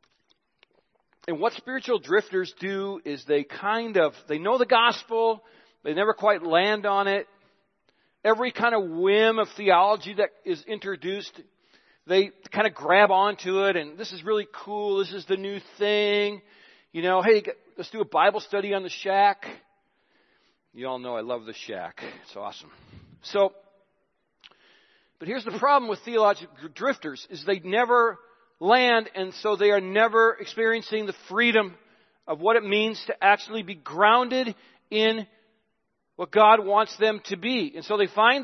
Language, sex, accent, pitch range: English, male, American, 195-235 Hz